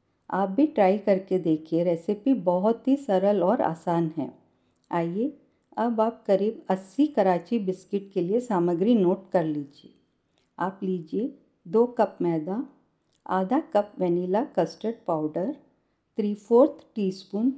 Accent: native